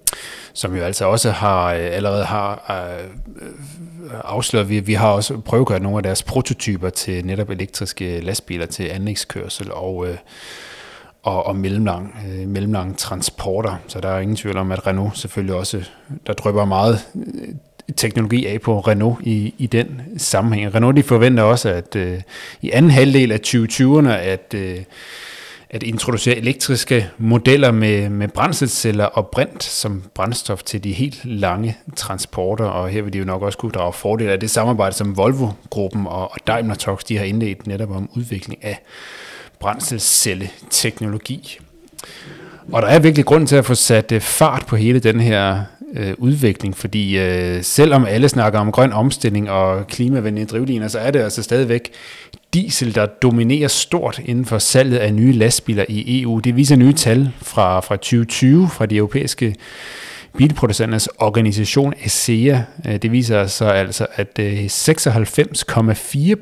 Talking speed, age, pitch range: 150 wpm, 30-49, 100-125 Hz